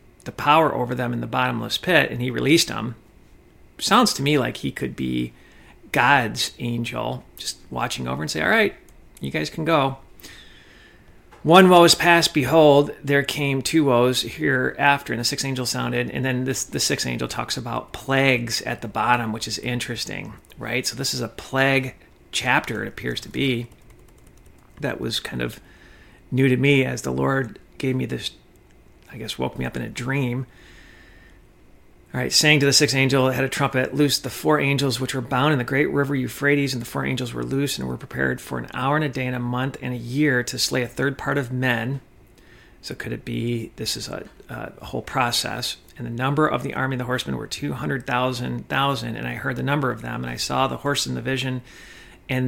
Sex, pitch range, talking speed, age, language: male, 120-140 Hz, 210 wpm, 40-59, English